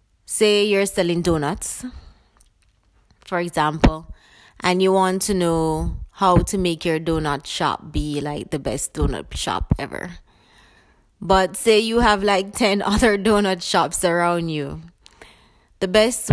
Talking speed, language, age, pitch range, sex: 135 wpm, English, 20-39, 155-195 Hz, female